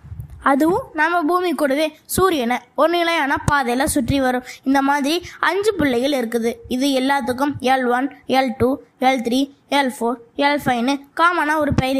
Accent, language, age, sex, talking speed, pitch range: native, Tamil, 20-39, female, 130 wpm, 245-300 Hz